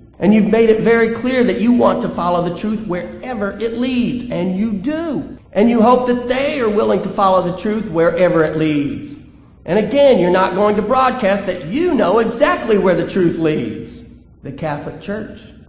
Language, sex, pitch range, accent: English, male, 170-215 Hz, American